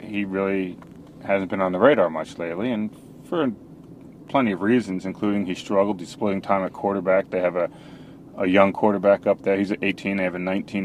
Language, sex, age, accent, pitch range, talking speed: English, male, 30-49, American, 90-105 Hz, 200 wpm